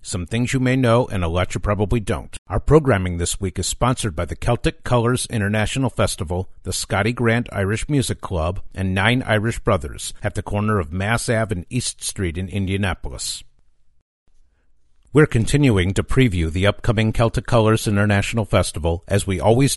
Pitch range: 90-120 Hz